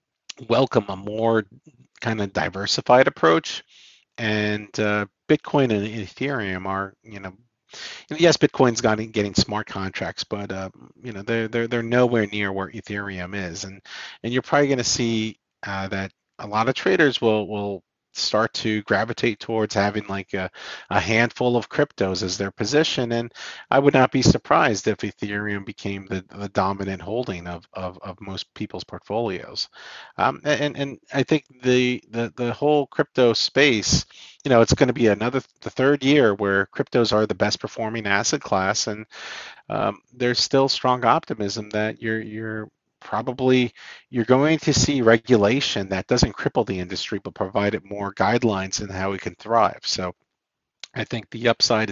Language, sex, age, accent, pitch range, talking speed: English, male, 40-59, American, 100-125 Hz, 170 wpm